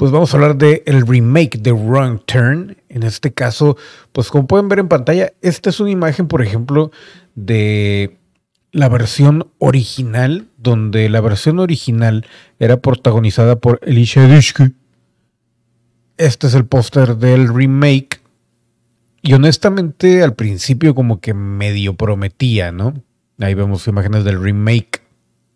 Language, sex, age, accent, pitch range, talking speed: Spanish, male, 40-59, Mexican, 115-140 Hz, 135 wpm